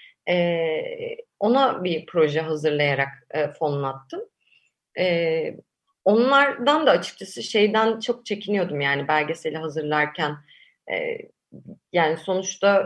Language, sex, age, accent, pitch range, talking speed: Turkish, female, 30-49, native, 160-225 Hz, 95 wpm